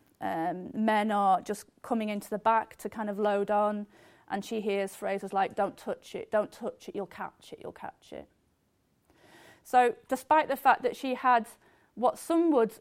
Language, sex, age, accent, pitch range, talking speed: English, female, 30-49, British, 210-255 Hz, 185 wpm